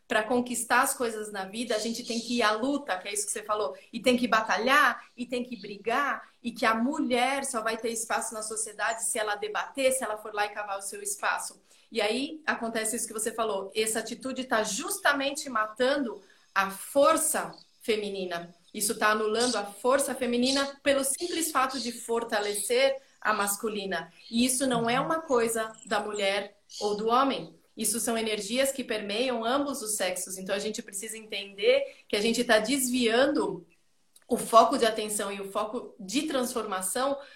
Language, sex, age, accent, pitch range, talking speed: Portuguese, female, 30-49, Brazilian, 215-255 Hz, 185 wpm